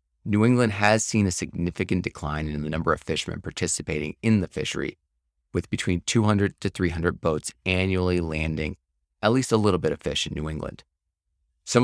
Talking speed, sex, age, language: 175 wpm, male, 30-49, English